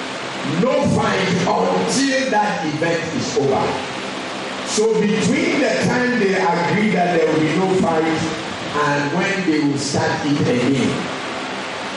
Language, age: English, 50-69